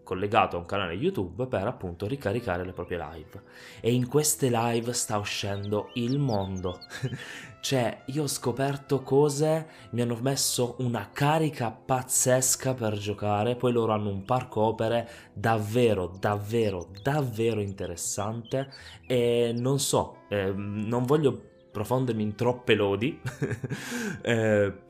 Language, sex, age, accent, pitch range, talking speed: Italian, male, 20-39, native, 100-125 Hz, 130 wpm